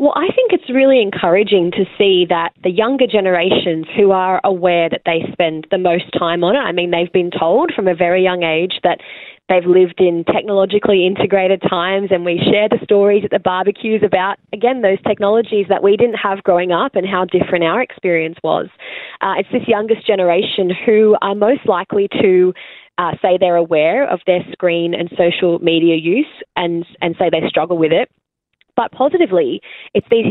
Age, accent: 20-39, Australian